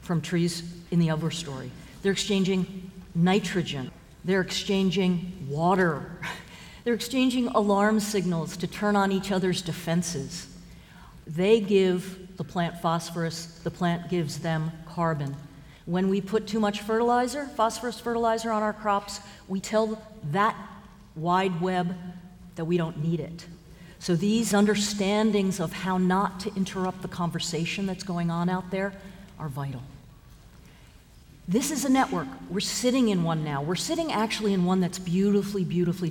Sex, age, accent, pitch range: female, 50-69, American, 175-215 Hz